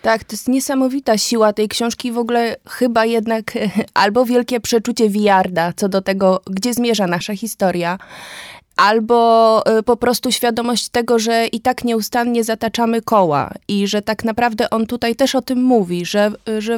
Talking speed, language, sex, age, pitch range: 160 wpm, Polish, female, 20-39, 210-240 Hz